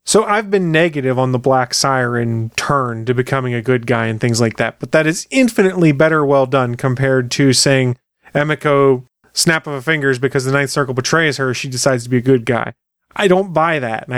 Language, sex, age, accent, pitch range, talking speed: English, male, 30-49, American, 130-170 Hz, 215 wpm